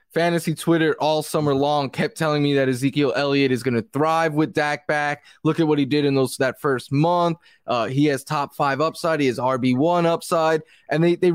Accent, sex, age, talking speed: American, male, 20-39, 215 wpm